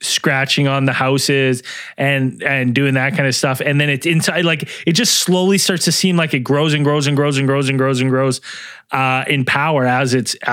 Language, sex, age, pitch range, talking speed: English, male, 20-39, 125-155 Hz, 230 wpm